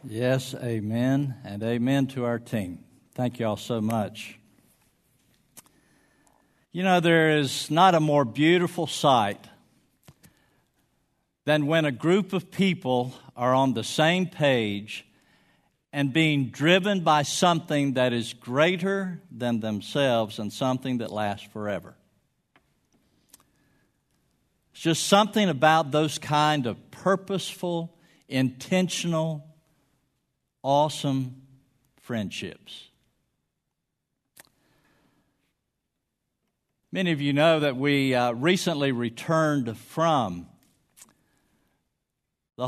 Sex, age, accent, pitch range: male, 50-69, American, 125-165 Hz